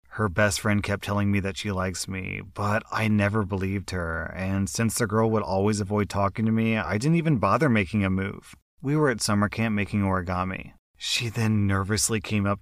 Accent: American